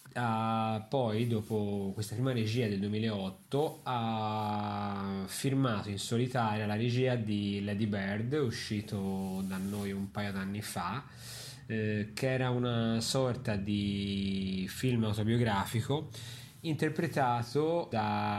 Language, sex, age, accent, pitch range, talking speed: Italian, male, 20-39, native, 105-125 Hz, 115 wpm